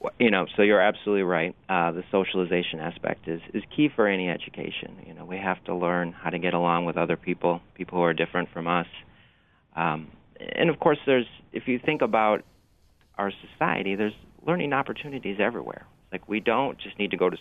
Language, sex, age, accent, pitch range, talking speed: English, male, 40-59, American, 85-95 Hz, 200 wpm